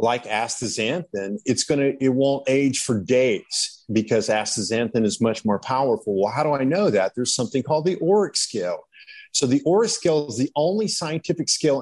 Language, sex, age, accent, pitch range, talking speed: English, male, 50-69, American, 115-155 Hz, 185 wpm